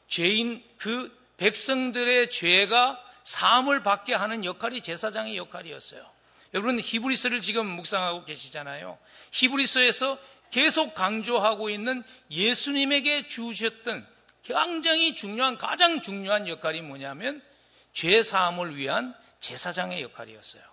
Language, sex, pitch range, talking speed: English, male, 160-250 Hz, 95 wpm